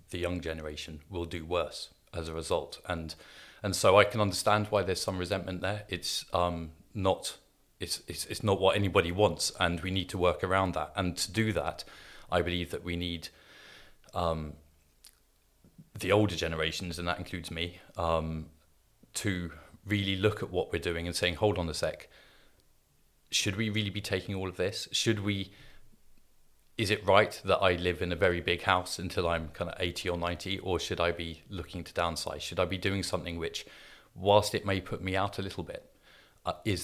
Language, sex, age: English, male, 30-49